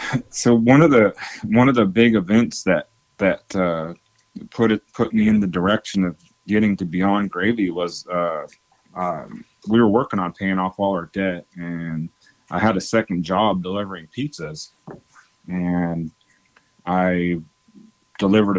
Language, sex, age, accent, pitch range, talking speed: English, male, 30-49, American, 90-105 Hz, 155 wpm